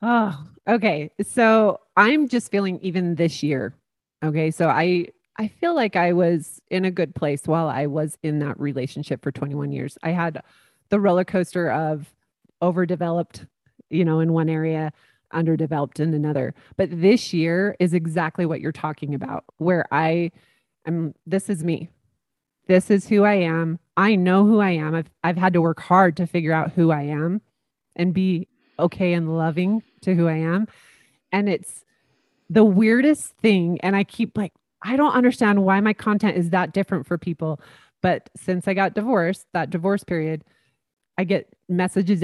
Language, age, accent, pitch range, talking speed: English, 30-49, American, 160-195 Hz, 175 wpm